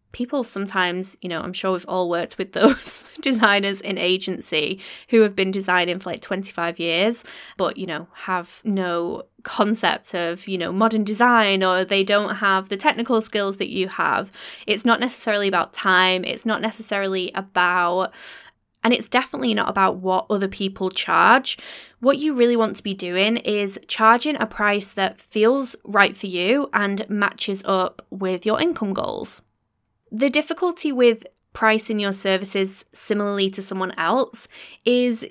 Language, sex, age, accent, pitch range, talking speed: English, female, 20-39, British, 190-230 Hz, 160 wpm